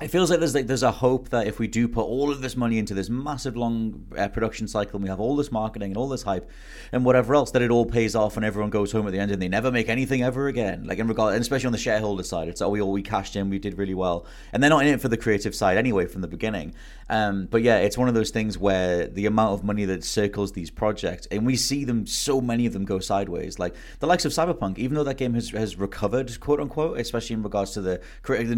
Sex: male